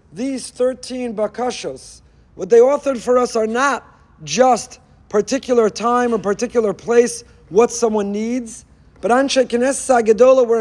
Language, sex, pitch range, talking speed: English, male, 220-265 Hz, 125 wpm